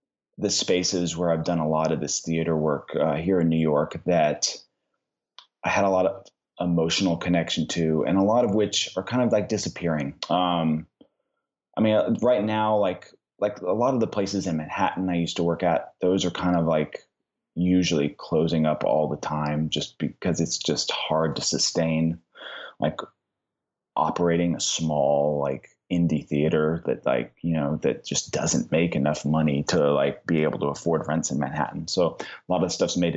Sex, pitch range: male, 80-90 Hz